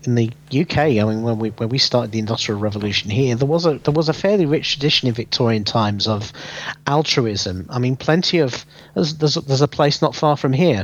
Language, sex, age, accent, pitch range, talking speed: English, male, 40-59, British, 115-150 Hz, 235 wpm